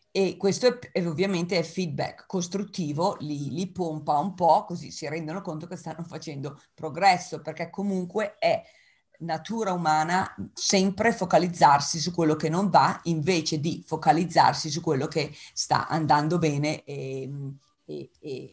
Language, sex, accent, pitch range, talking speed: Italian, female, native, 145-180 Hz, 145 wpm